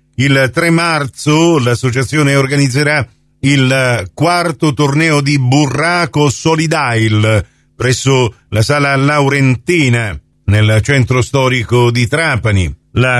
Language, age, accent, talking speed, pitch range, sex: Italian, 50-69, native, 95 wpm, 120-150 Hz, male